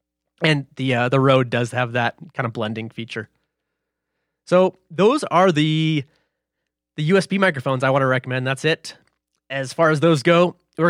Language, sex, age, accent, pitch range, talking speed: English, male, 20-39, American, 135-165 Hz, 170 wpm